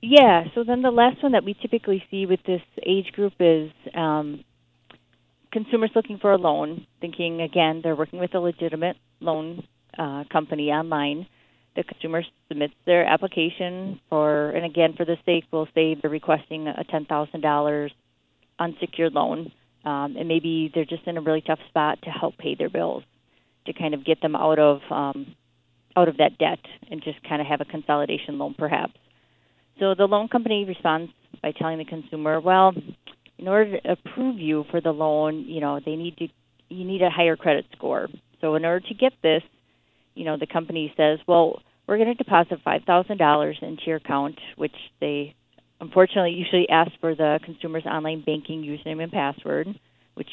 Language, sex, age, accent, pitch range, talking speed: English, female, 30-49, American, 150-180 Hz, 180 wpm